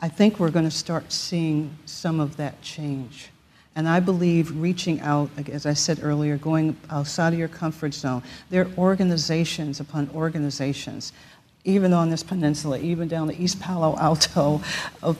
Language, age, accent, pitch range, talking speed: English, 50-69, American, 145-175 Hz, 160 wpm